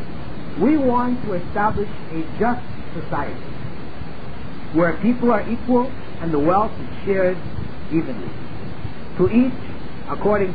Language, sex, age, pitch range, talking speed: Filipino, male, 50-69, 160-225 Hz, 115 wpm